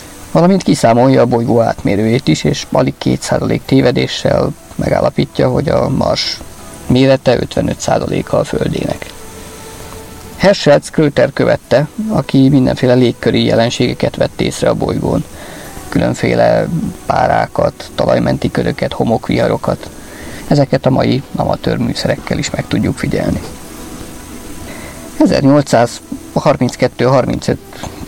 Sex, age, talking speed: male, 50-69, 95 wpm